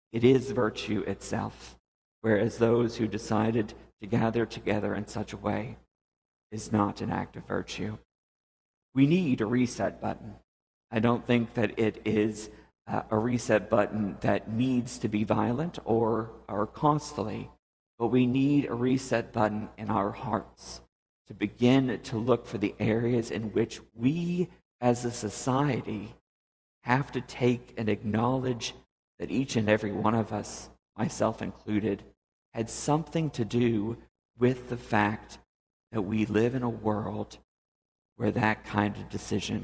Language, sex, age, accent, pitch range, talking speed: English, male, 50-69, American, 105-125 Hz, 150 wpm